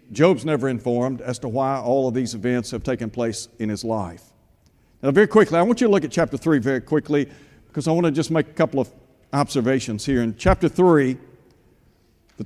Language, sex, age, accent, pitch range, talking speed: English, male, 60-79, American, 130-175 Hz, 210 wpm